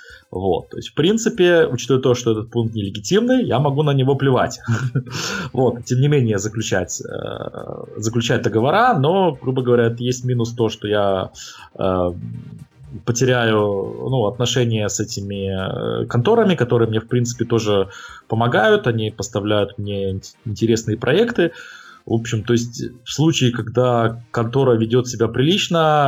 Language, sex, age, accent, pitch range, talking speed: Russian, male, 20-39, native, 110-130 Hz, 125 wpm